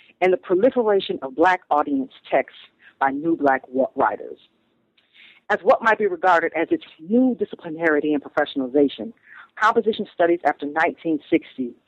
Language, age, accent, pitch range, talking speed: English, 40-59, American, 145-175 Hz, 130 wpm